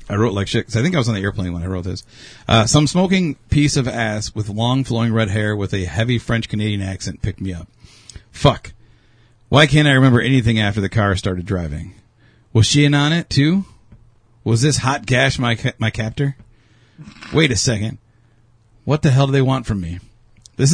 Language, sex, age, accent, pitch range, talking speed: English, male, 40-59, American, 105-125 Hz, 210 wpm